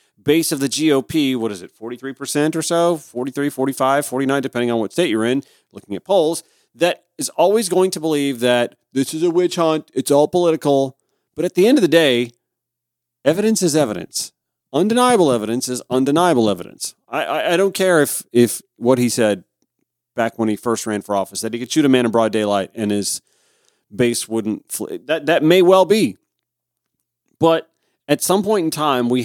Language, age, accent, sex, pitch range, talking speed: English, 40-59, American, male, 115-155 Hz, 195 wpm